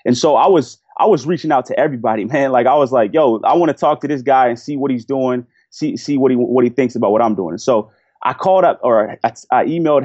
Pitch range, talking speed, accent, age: 120-160 Hz, 285 wpm, American, 20-39